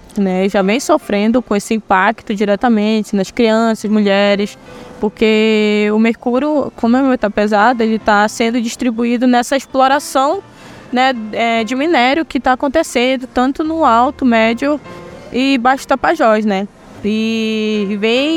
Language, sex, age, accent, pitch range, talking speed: Portuguese, female, 20-39, Brazilian, 215-270 Hz, 130 wpm